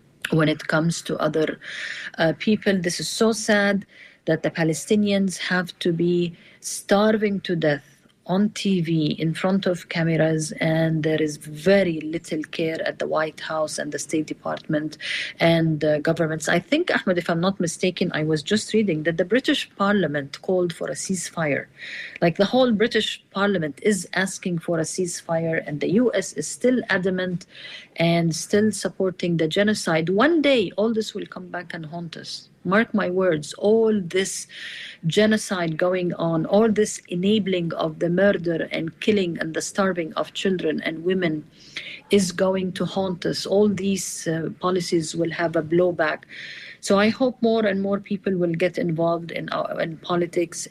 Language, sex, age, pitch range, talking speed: English, female, 40-59, 165-200 Hz, 170 wpm